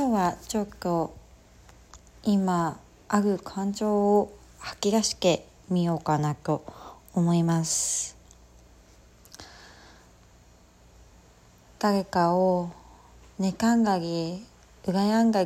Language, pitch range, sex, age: Japanese, 165-225 Hz, female, 20-39